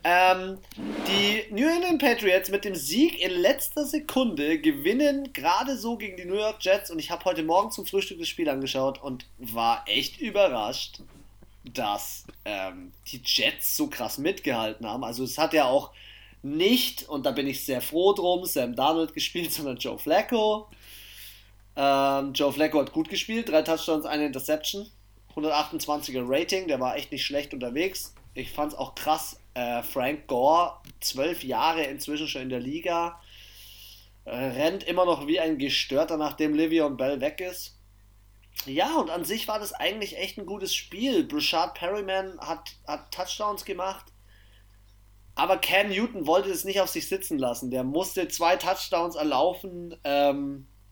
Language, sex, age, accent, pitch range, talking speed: German, male, 30-49, German, 130-190 Hz, 160 wpm